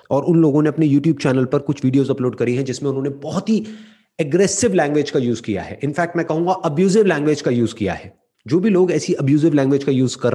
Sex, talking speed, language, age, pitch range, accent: male, 240 wpm, English, 30-49, 130-170 Hz, Indian